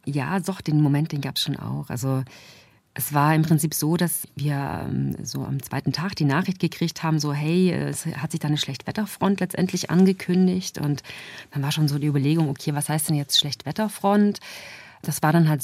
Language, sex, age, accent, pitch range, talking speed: German, female, 30-49, German, 150-170 Hz, 200 wpm